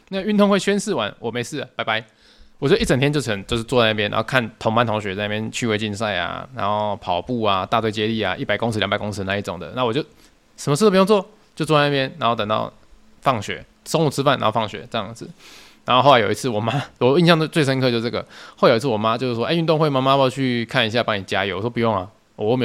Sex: male